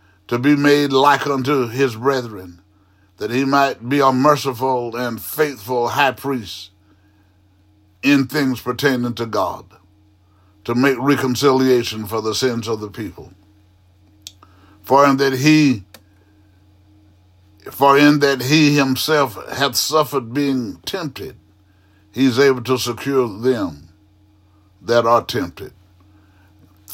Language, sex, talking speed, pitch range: English, male, 125 wpm, 100-135 Hz